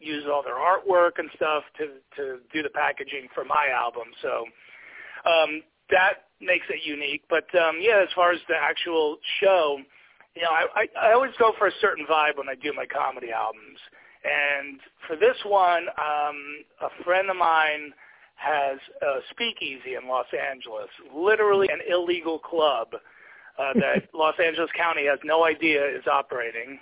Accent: American